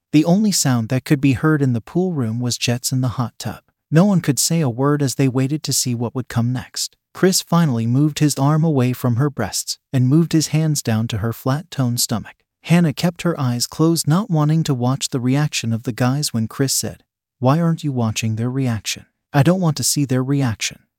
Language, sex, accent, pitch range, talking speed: English, male, American, 125-155 Hz, 230 wpm